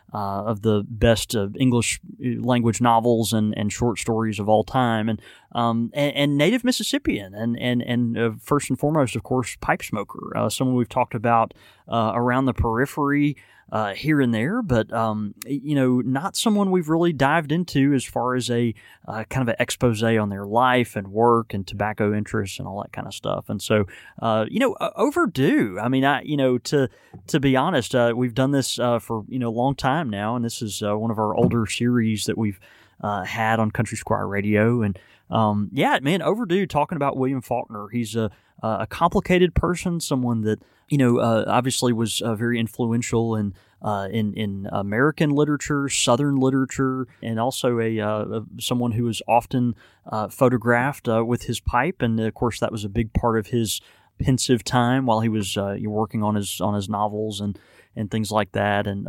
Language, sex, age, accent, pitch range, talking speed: English, male, 20-39, American, 110-130 Hz, 200 wpm